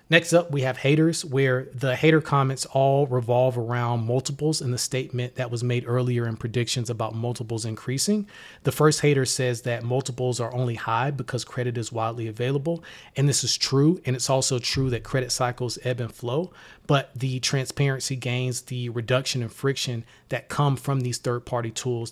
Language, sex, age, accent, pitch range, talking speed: English, male, 30-49, American, 120-135 Hz, 185 wpm